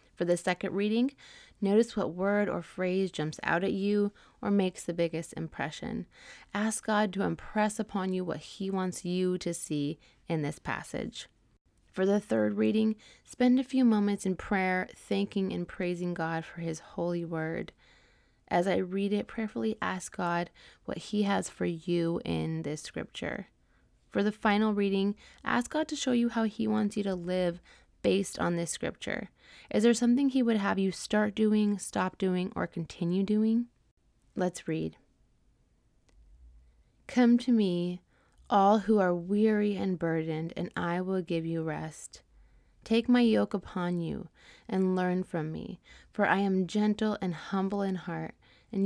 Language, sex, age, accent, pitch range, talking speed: English, female, 20-39, American, 165-205 Hz, 165 wpm